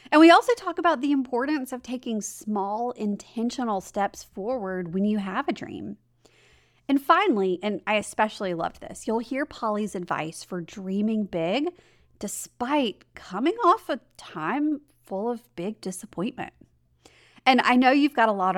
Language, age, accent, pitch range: English, 30-49, American, 190-270 Hz